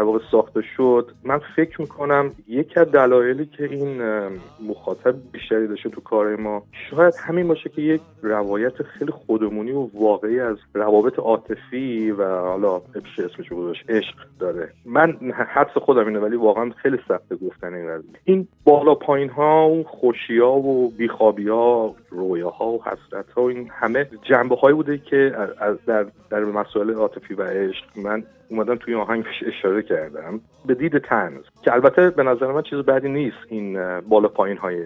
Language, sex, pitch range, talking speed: Persian, male, 105-140 Hz, 155 wpm